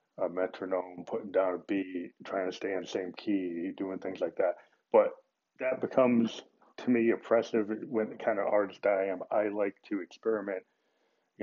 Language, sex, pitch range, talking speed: English, male, 95-120 Hz, 185 wpm